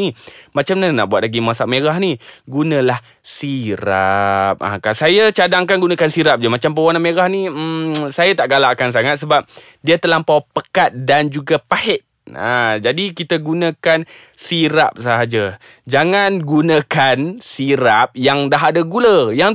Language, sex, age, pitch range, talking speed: Malay, male, 20-39, 135-180 Hz, 145 wpm